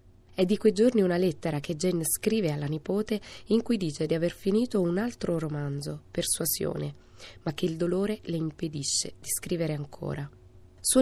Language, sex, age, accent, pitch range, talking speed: Italian, female, 20-39, native, 150-190 Hz, 170 wpm